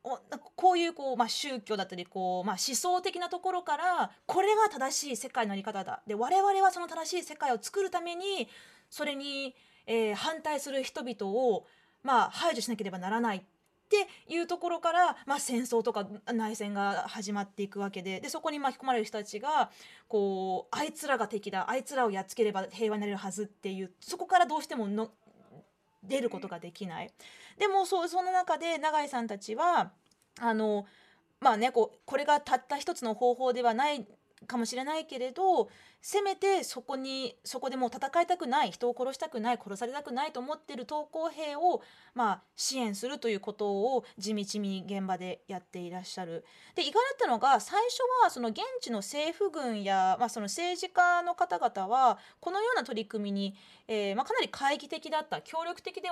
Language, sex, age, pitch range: Japanese, female, 20-39, 210-320 Hz